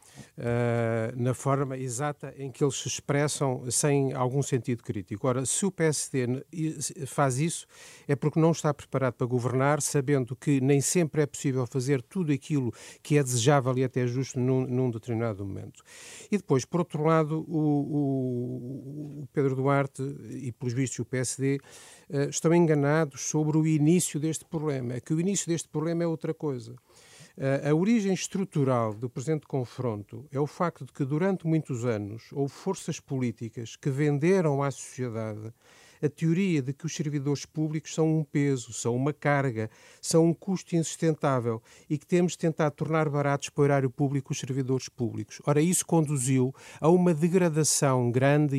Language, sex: Portuguese, male